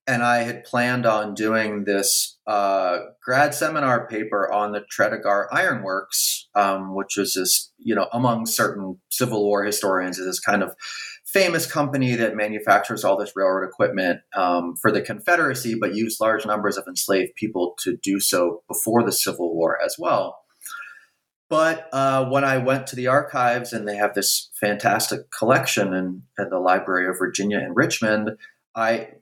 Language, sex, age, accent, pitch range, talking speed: English, male, 30-49, American, 100-125 Hz, 165 wpm